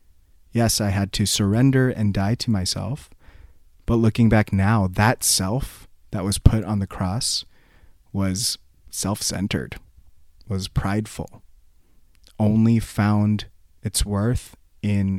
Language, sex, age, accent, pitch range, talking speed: English, male, 30-49, American, 90-110 Hz, 125 wpm